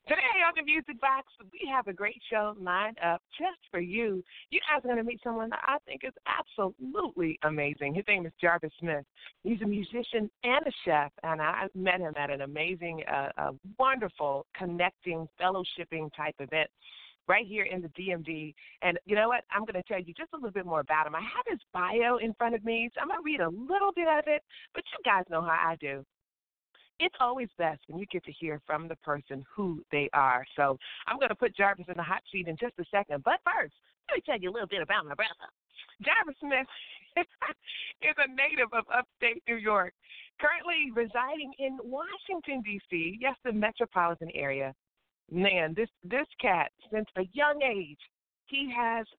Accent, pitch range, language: American, 165-245 Hz, English